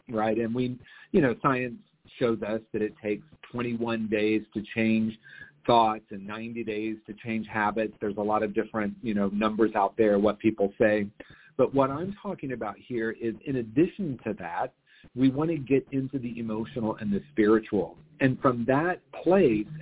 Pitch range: 110-135 Hz